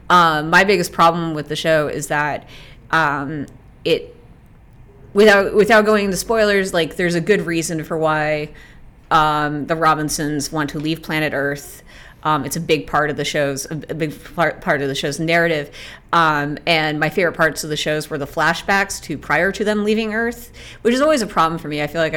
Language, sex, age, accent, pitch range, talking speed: English, female, 30-49, American, 145-190 Hz, 200 wpm